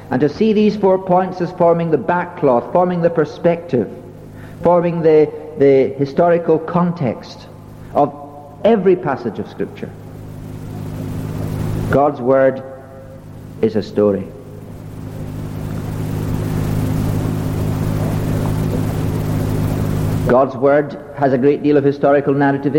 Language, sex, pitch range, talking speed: English, male, 120-155 Hz, 100 wpm